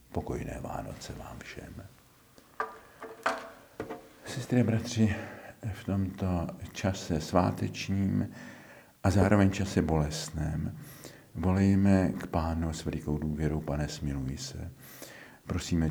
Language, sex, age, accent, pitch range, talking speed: Czech, male, 50-69, native, 75-90 Hz, 90 wpm